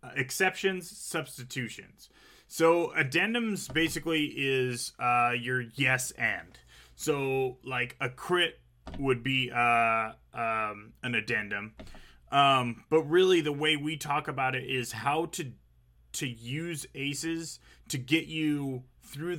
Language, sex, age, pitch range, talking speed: English, male, 30-49, 115-150 Hz, 120 wpm